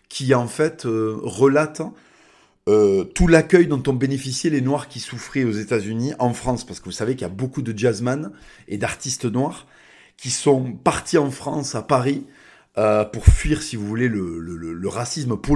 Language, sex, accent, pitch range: French, male, French, 115-145 Hz